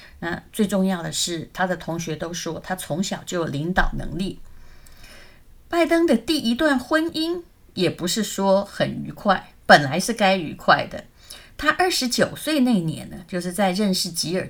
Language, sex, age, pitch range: Chinese, female, 30-49, 165-205 Hz